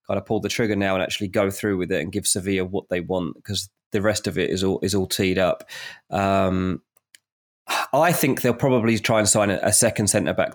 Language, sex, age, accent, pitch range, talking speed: English, male, 20-39, British, 100-125 Hz, 220 wpm